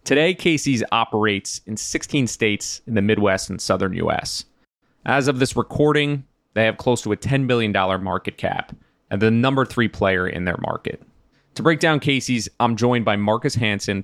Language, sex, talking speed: English, male, 180 wpm